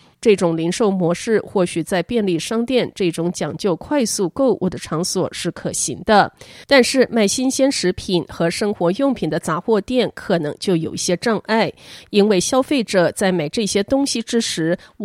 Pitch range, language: 170-235 Hz, Chinese